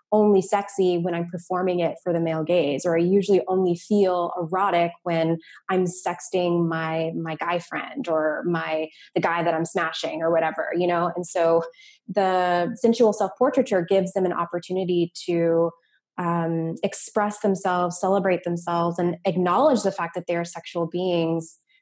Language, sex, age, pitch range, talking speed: English, female, 20-39, 170-190 Hz, 160 wpm